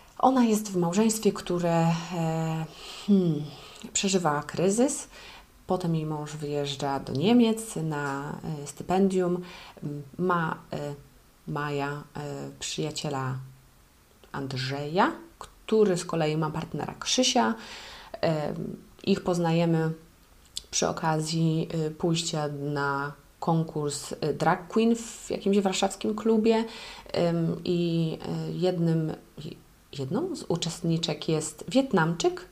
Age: 30-49